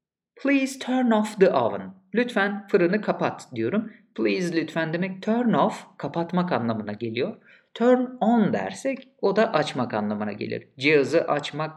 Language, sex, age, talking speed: Turkish, male, 50-69, 140 wpm